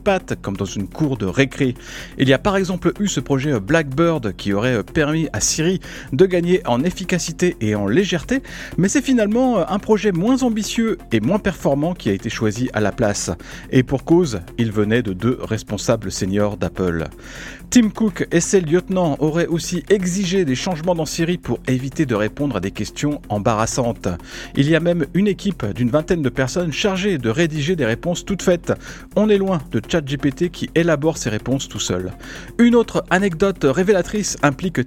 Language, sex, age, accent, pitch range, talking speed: French, male, 40-59, French, 115-185 Hz, 185 wpm